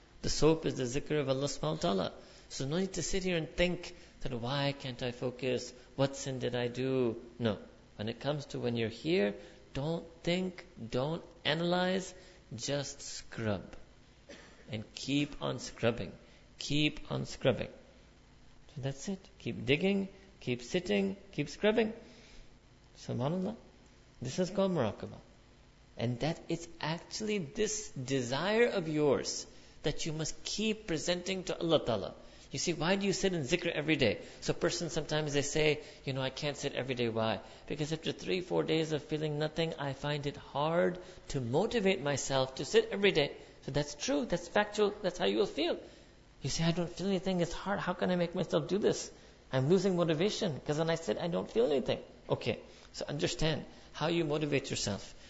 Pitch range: 135-180 Hz